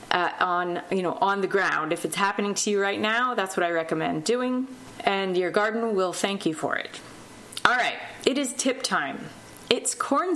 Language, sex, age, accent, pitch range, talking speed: English, female, 30-49, American, 185-235 Hz, 190 wpm